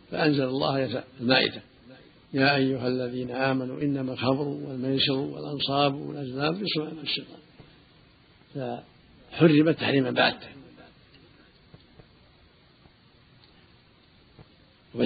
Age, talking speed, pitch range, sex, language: 70-89, 70 wpm, 125-145 Hz, male, Arabic